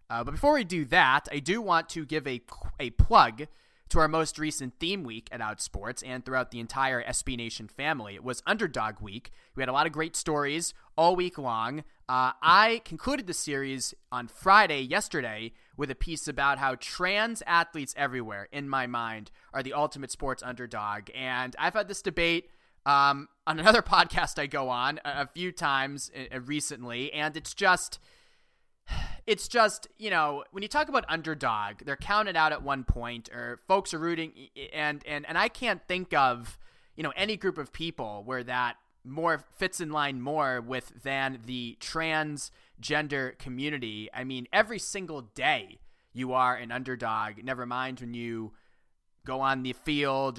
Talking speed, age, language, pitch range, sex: 175 wpm, 20-39, English, 125-165 Hz, male